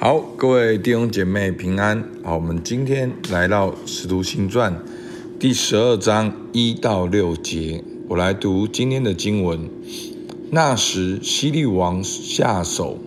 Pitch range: 95-120 Hz